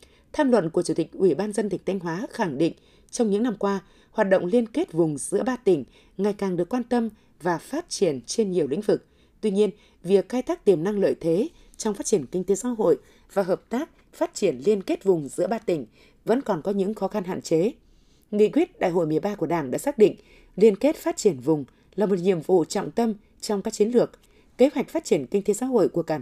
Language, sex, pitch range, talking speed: Vietnamese, female, 185-240 Hz, 245 wpm